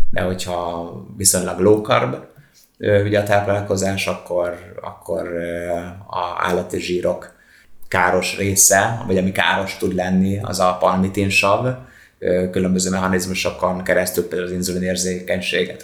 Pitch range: 90-100 Hz